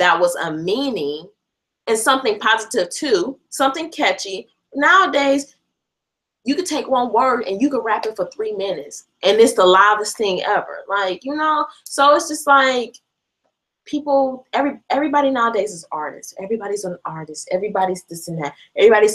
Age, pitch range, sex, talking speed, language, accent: 20-39, 180-280 Hz, female, 160 wpm, English, American